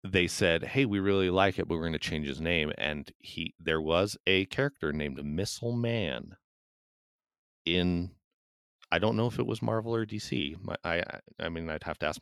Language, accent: English, American